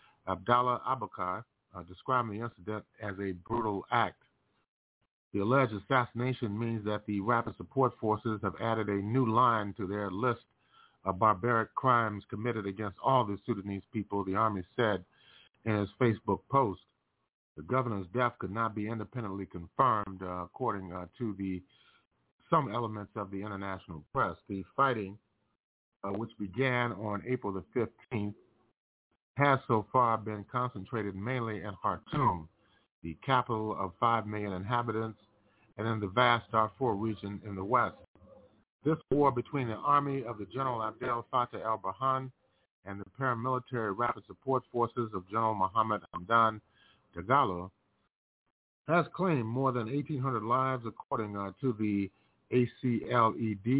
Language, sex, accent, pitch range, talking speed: English, male, American, 100-125 Hz, 140 wpm